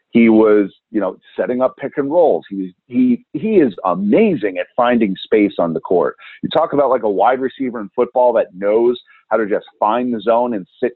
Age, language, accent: 40-59, English, American